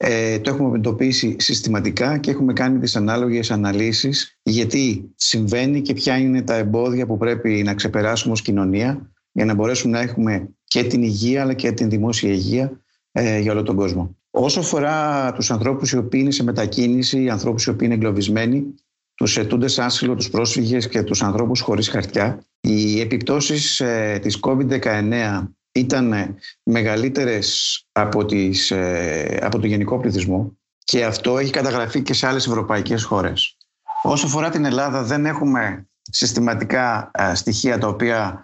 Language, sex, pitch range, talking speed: Greek, male, 105-125 Hz, 150 wpm